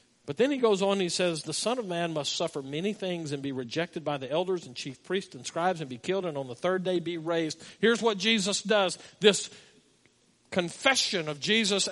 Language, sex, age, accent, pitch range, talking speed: English, male, 50-69, American, 150-220 Hz, 225 wpm